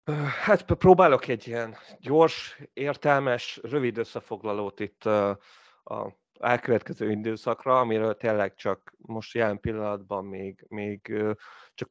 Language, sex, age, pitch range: Hungarian, male, 30-49, 105-115 Hz